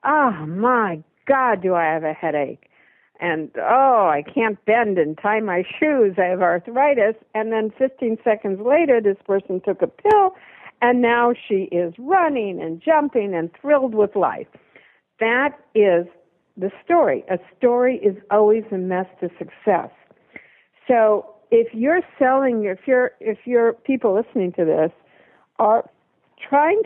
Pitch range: 185-250 Hz